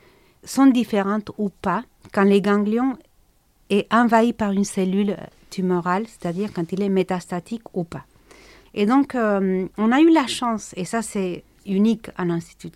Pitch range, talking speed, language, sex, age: 185-235 Hz, 160 wpm, French, female, 40-59